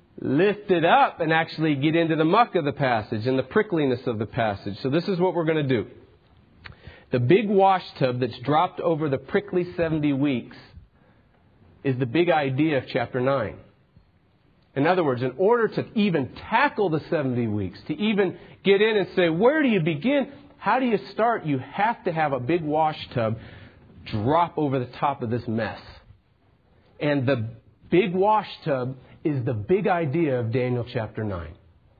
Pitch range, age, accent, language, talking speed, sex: 120-170 Hz, 40-59, American, English, 180 wpm, male